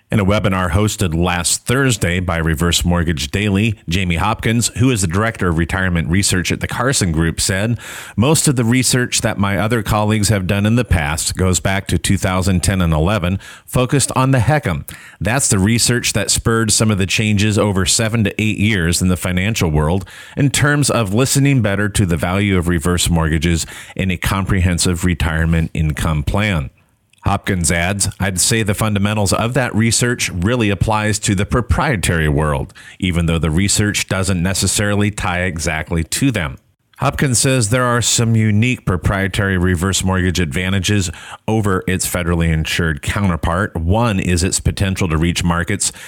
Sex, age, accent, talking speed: male, 30-49, American, 170 wpm